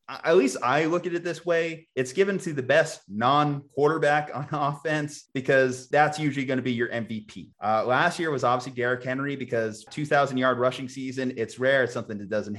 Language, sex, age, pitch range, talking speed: English, male, 30-49, 120-145 Hz, 195 wpm